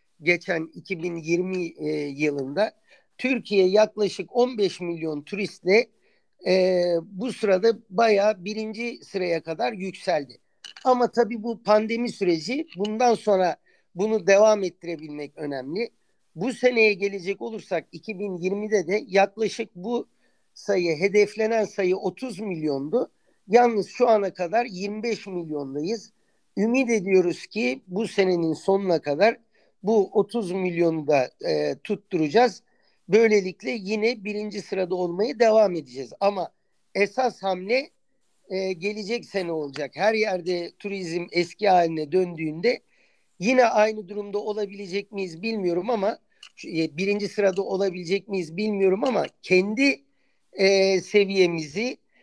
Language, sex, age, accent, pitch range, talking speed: Turkish, male, 50-69, native, 180-220 Hz, 110 wpm